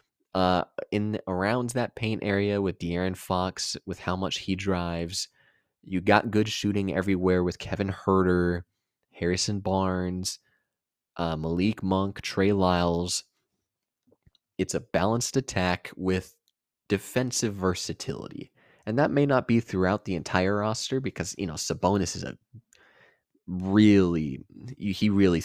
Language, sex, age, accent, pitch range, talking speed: English, male, 20-39, American, 85-100 Hz, 125 wpm